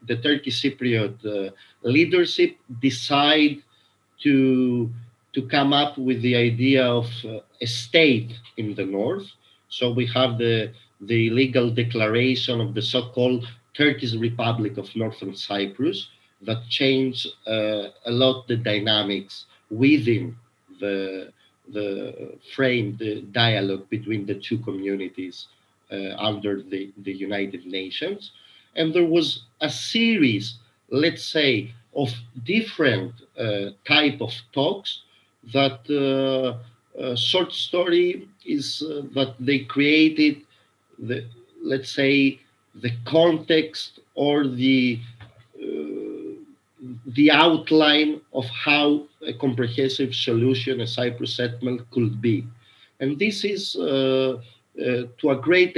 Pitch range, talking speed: 110-145 Hz, 115 wpm